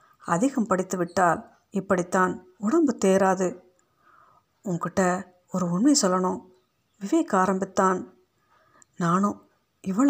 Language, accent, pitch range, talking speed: Tamil, native, 180-220 Hz, 85 wpm